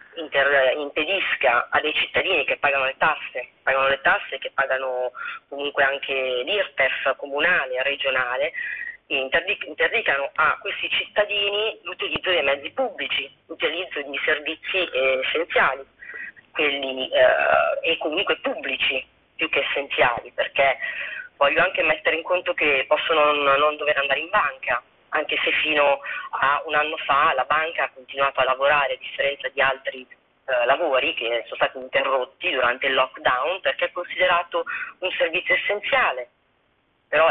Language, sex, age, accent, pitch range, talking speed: Italian, female, 30-49, native, 135-200 Hz, 135 wpm